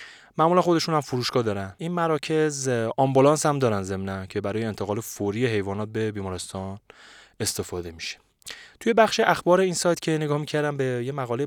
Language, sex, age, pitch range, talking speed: Persian, male, 30-49, 110-160 Hz, 160 wpm